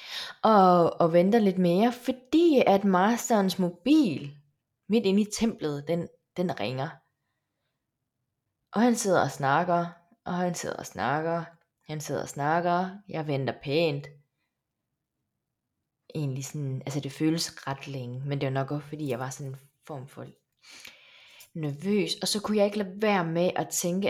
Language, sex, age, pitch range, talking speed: Danish, female, 20-39, 140-175 Hz, 155 wpm